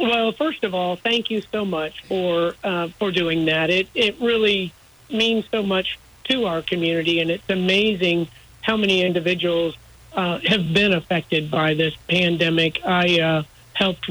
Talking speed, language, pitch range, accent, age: 160 wpm, English, 170-200 Hz, American, 50-69